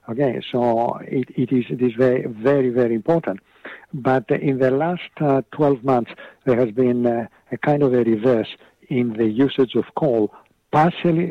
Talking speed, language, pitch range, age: 175 wpm, English, 115-140 Hz, 60-79